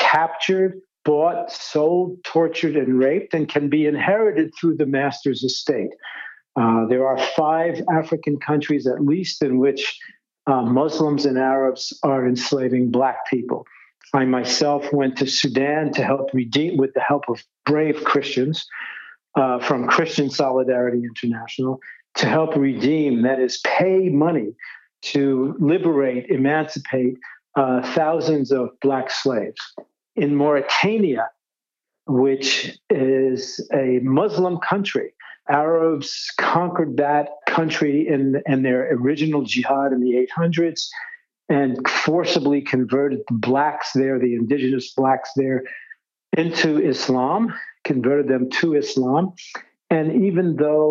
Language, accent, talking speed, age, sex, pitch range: English, American, 125 wpm, 50-69, male, 130-155 Hz